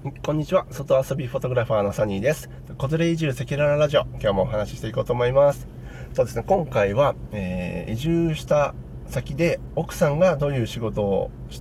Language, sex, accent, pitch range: Japanese, male, native, 105-150 Hz